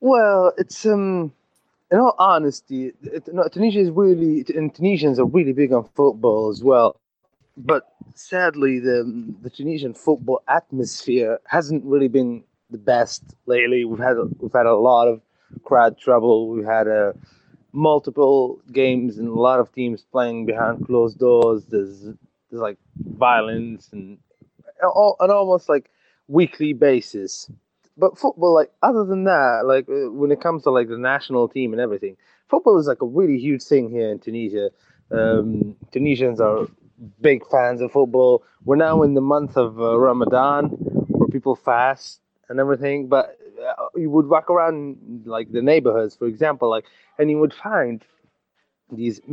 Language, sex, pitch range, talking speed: English, male, 120-160 Hz, 160 wpm